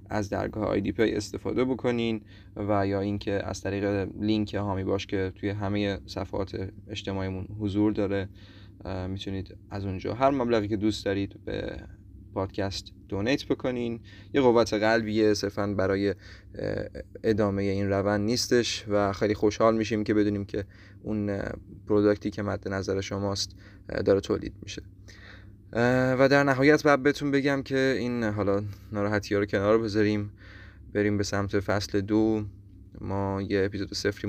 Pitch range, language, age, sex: 100-110 Hz, Persian, 20-39, male